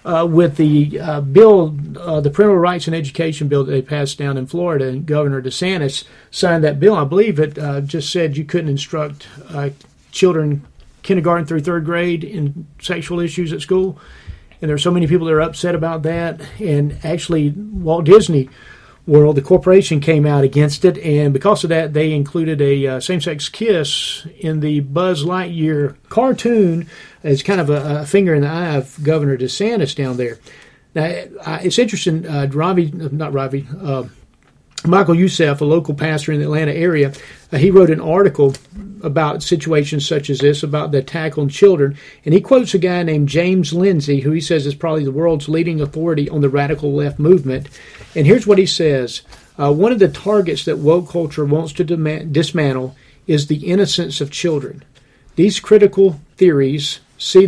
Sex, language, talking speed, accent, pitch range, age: male, English, 185 wpm, American, 145-175 Hz, 40-59